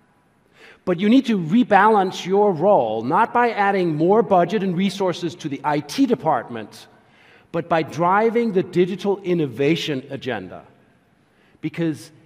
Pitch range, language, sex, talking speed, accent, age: 170-225 Hz, English, male, 125 wpm, American, 50-69